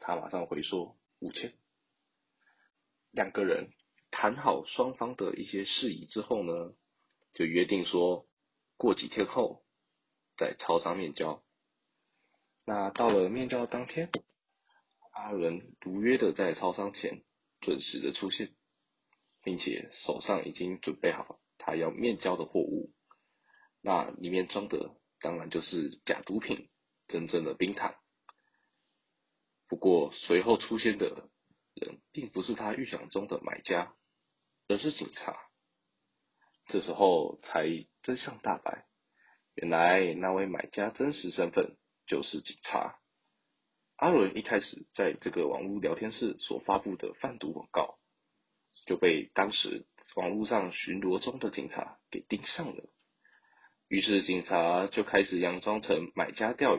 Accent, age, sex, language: native, 20-39, male, Chinese